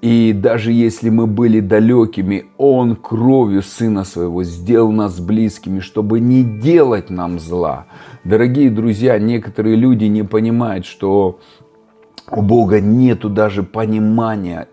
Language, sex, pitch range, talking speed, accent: Russian, male, 95-115 Hz, 120 wpm, native